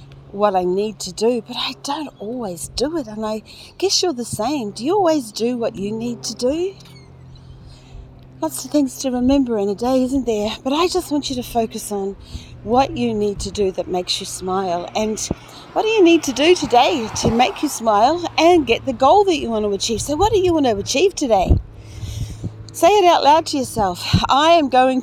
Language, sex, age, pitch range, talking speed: English, female, 40-59, 190-265 Hz, 220 wpm